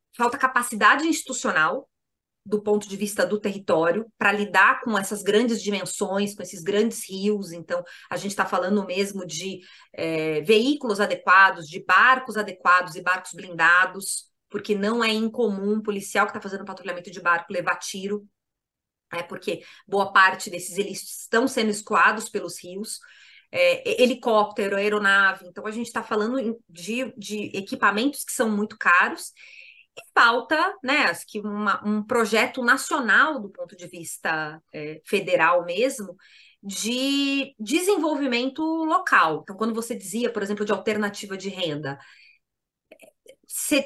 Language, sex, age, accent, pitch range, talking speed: Portuguese, female, 20-39, Brazilian, 195-260 Hz, 145 wpm